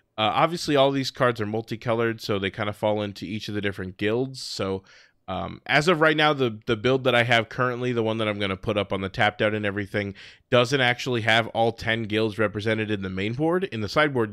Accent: American